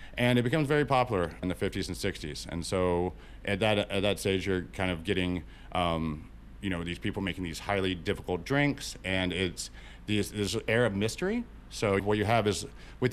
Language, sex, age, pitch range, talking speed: English, male, 40-59, 90-120 Hz, 200 wpm